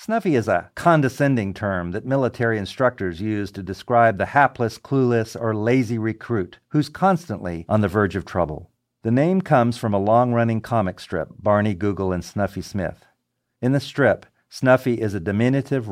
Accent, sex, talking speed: American, male, 165 wpm